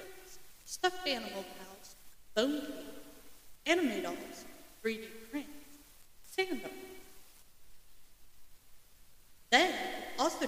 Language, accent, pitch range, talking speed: English, American, 210-290 Hz, 70 wpm